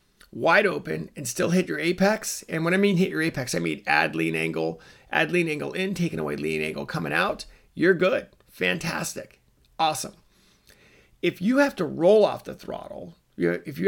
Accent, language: American, English